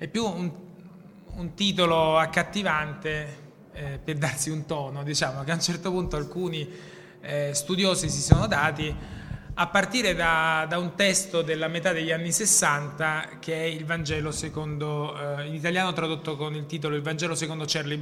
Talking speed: 165 wpm